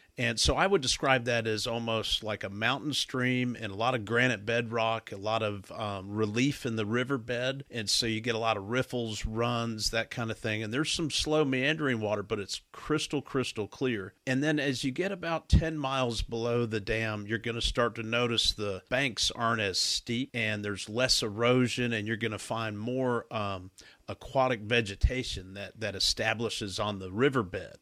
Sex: male